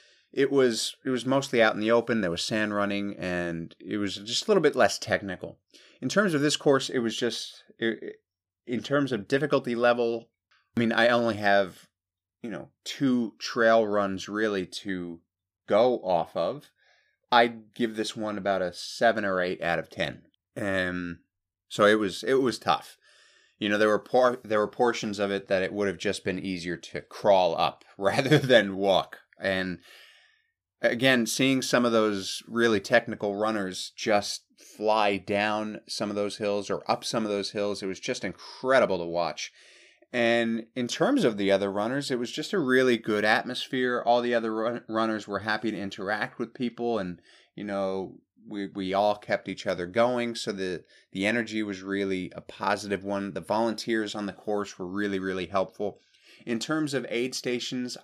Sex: male